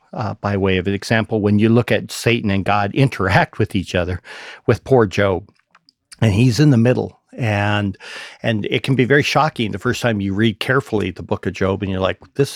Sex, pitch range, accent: male, 100-125 Hz, American